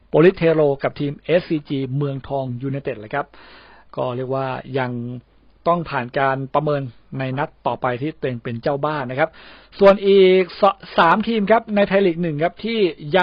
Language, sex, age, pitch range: Thai, male, 60-79, 140-190 Hz